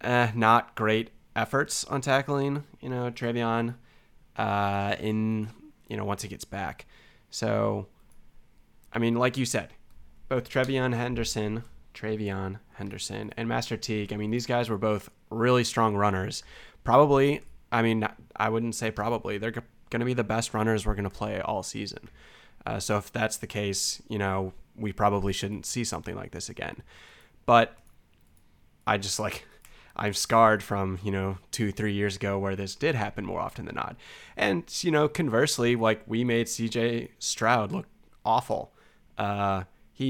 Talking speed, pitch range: 165 wpm, 100-115 Hz